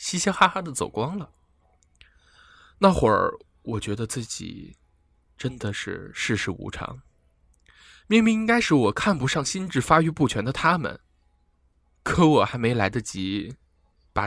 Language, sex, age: Chinese, male, 20-39